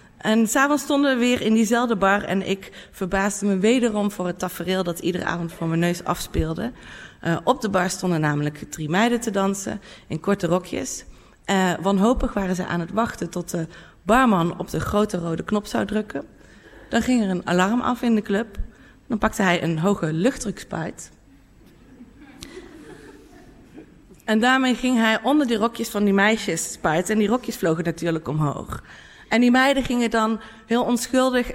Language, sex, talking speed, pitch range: Dutch, female, 175 wpm, 175-230 Hz